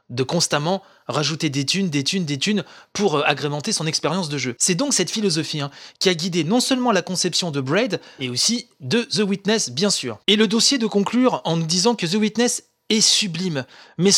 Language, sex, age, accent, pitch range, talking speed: French, male, 30-49, French, 150-205 Hz, 210 wpm